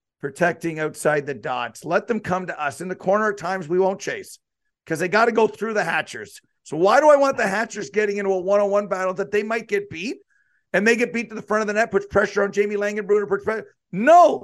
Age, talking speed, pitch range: 50-69, 240 wpm, 195-255 Hz